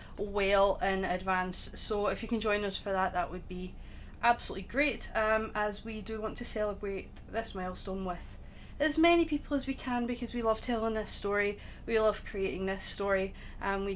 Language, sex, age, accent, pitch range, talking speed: English, female, 30-49, British, 200-250 Hz, 195 wpm